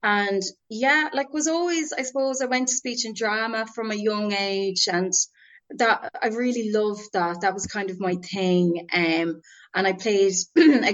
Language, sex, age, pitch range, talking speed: English, female, 20-39, 190-235 Hz, 185 wpm